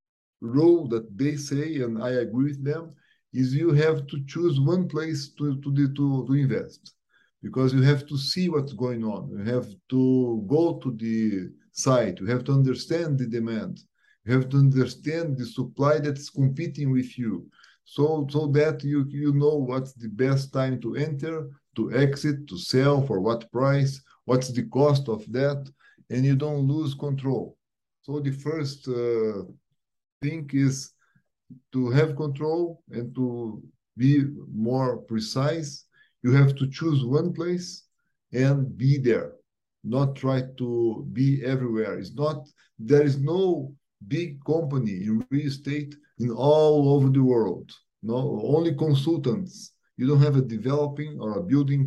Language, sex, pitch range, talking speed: English, male, 125-150 Hz, 155 wpm